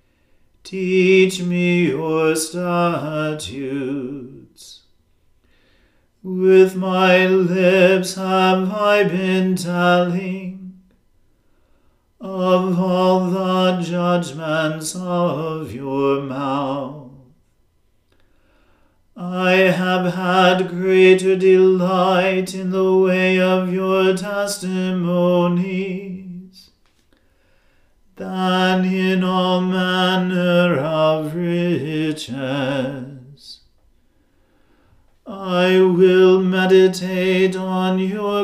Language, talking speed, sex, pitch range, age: English, 60 wpm, male, 160-185 Hz, 40-59